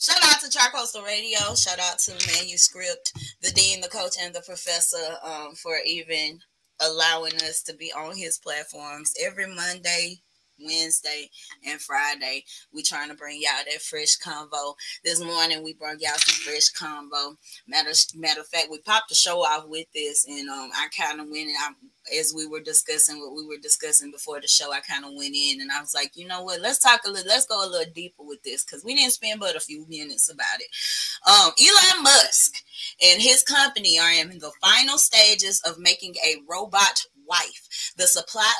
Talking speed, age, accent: 200 wpm, 20-39, American